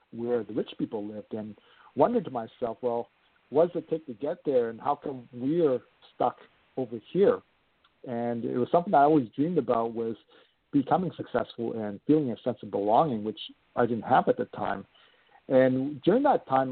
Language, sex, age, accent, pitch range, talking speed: English, male, 50-69, American, 120-155 Hz, 190 wpm